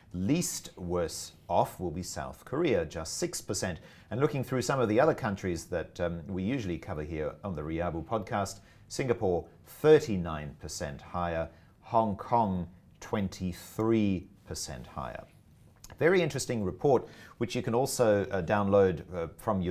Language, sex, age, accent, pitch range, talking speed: English, male, 40-59, Australian, 85-110 Hz, 135 wpm